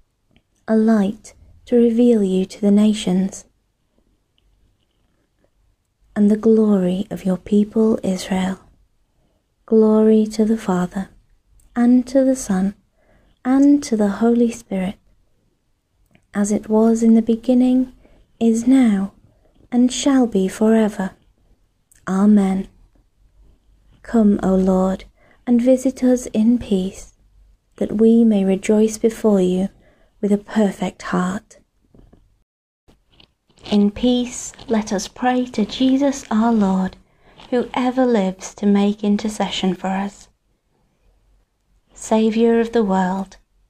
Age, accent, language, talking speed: 30-49, British, English, 110 wpm